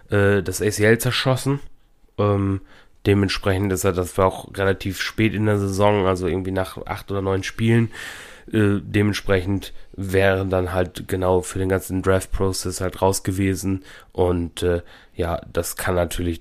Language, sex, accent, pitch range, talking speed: German, male, German, 90-110 Hz, 150 wpm